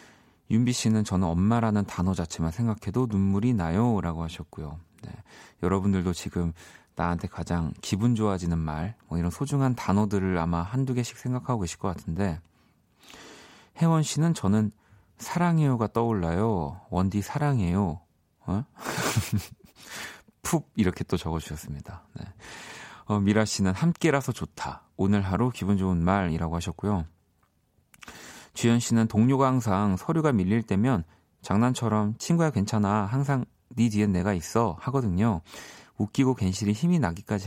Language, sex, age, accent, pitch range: Korean, male, 40-59, native, 90-120 Hz